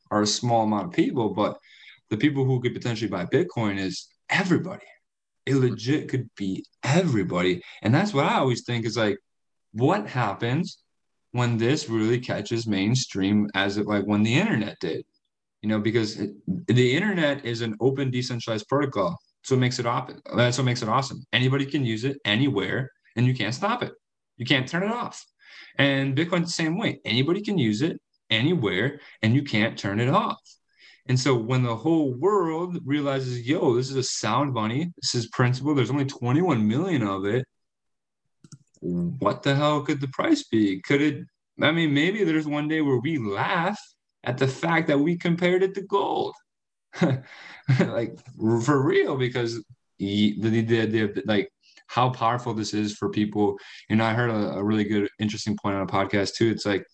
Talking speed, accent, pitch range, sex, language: 180 wpm, American, 110-145 Hz, male, English